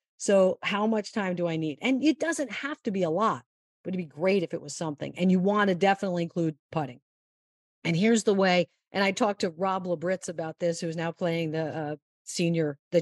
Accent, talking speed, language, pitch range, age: American, 230 wpm, English, 170-220 Hz, 50-69